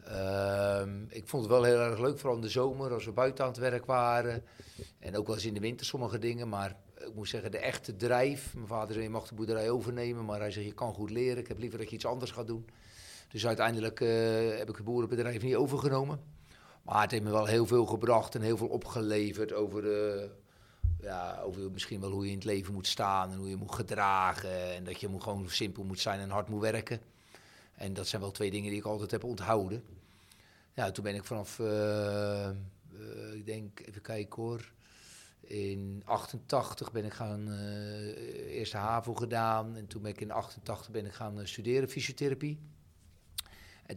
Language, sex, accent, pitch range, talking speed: Dutch, male, Dutch, 100-115 Hz, 210 wpm